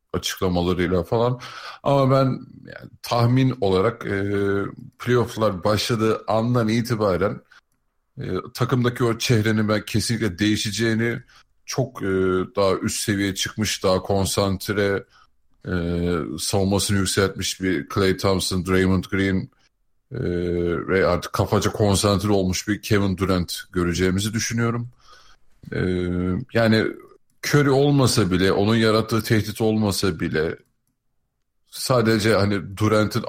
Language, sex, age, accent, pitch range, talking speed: Turkish, male, 50-69, native, 95-120 Hz, 105 wpm